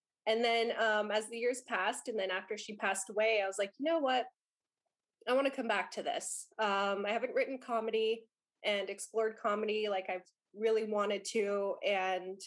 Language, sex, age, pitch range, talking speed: English, female, 20-39, 195-230 Hz, 190 wpm